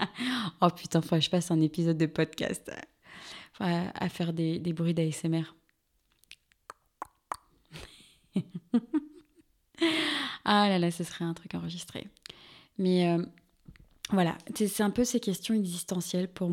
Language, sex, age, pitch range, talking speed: French, female, 20-39, 175-205 Hz, 125 wpm